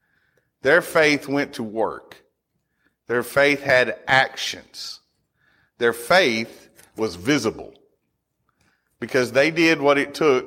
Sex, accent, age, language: male, American, 40-59, English